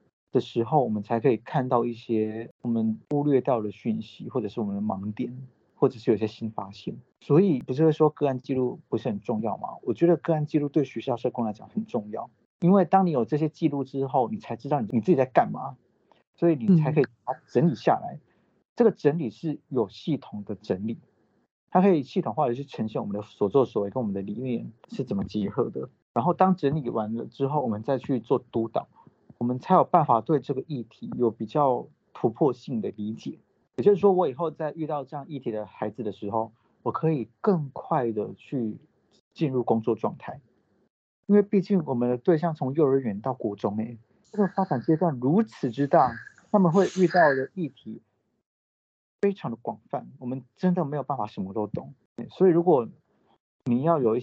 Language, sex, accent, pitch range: Chinese, male, native, 115-165 Hz